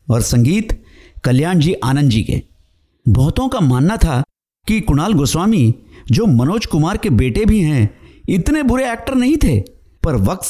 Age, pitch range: 50-69, 115-175 Hz